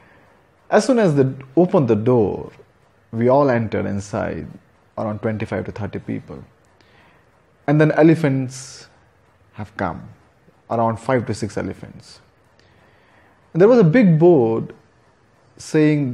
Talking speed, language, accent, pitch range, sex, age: 120 wpm, English, Indian, 110-155 Hz, male, 30-49